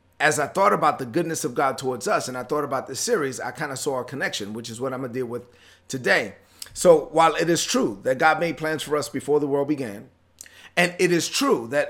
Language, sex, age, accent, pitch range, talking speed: English, male, 30-49, American, 135-165 Hz, 255 wpm